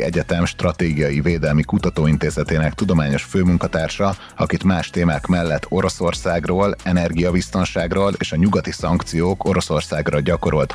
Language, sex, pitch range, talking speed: Hungarian, male, 75-90 Hz, 100 wpm